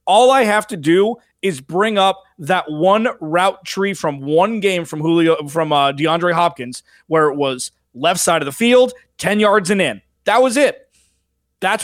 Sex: male